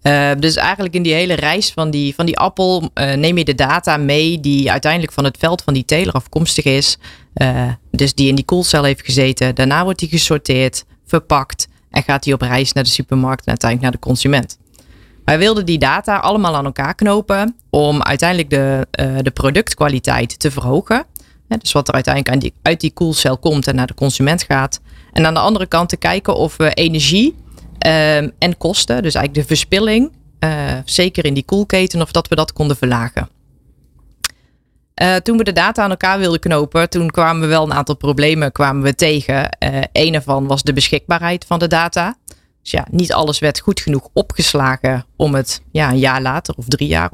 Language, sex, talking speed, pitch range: Dutch, female, 190 wpm, 135-170 Hz